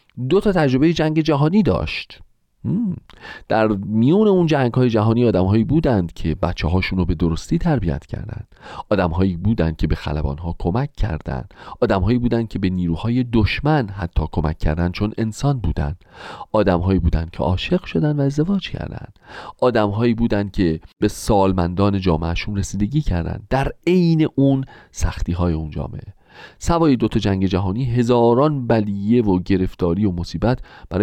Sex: male